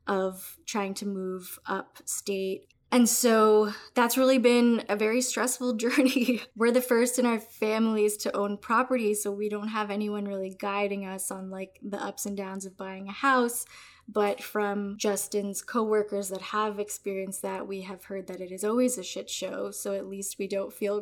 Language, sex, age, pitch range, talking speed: English, female, 10-29, 200-225 Hz, 185 wpm